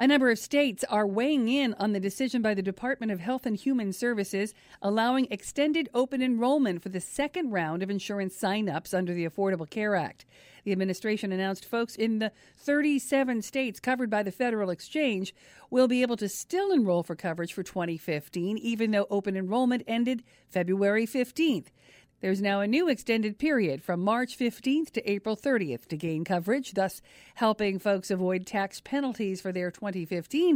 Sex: female